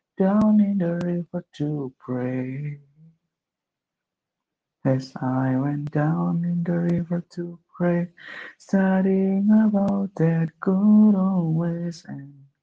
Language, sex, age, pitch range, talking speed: Indonesian, male, 30-49, 155-195 Hz, 100 wpm